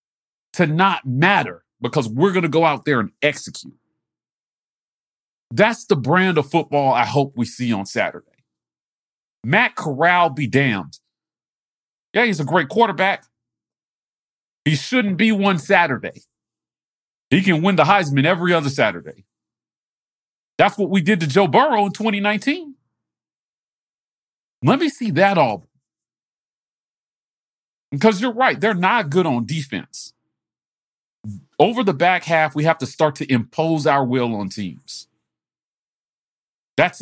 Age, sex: 40-59, male